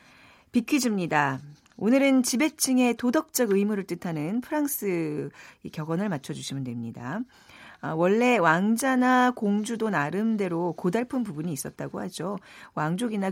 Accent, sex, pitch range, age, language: native, female, 150-235 Hz, 40-59, Korean